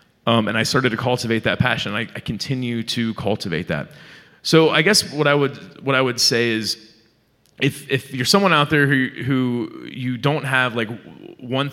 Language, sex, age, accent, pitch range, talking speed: English, male, 30-49, American, 110-140 Hz, 195 wpm